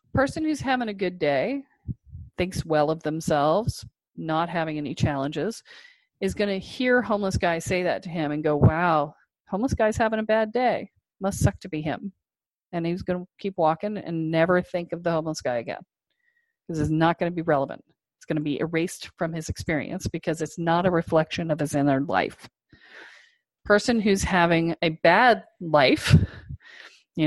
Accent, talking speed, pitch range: American, 185 wpm, 155-190 Hz